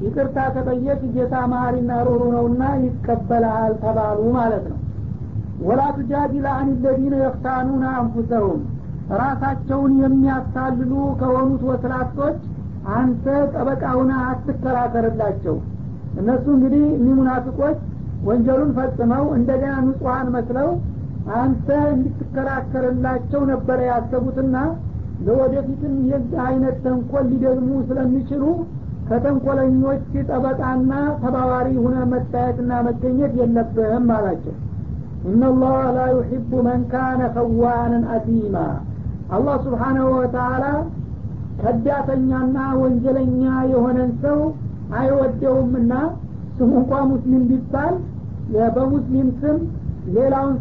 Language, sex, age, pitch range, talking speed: Amharic, male, 60-79, 240-265 Hz, 80 wpm